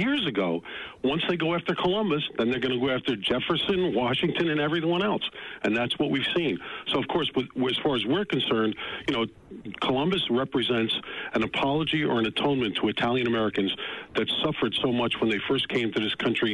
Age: 50-69